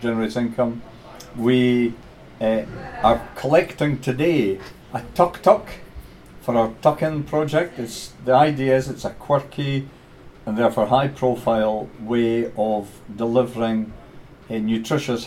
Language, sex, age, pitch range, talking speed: English, male, 50-69, 115-135 Hz, 120 wpm